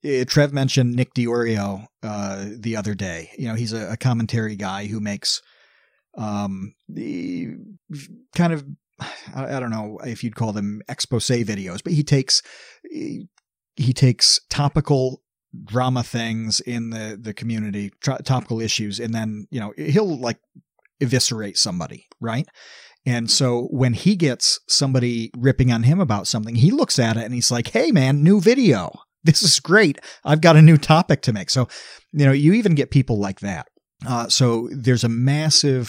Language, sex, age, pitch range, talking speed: English, male, 40-59, 110-140 Hz, 165 wpm